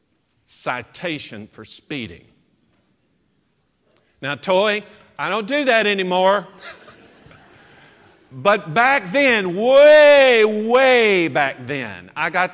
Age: 50-69